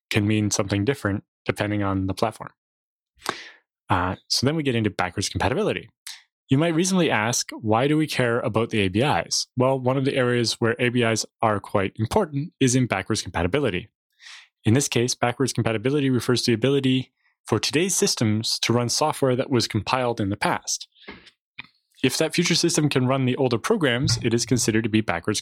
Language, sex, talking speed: English, male, 180 wpm